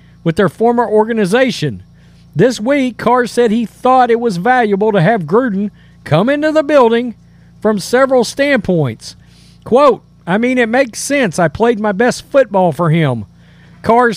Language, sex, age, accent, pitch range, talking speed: English, male, 40-59, American, 185-255 Hz, 155 wpm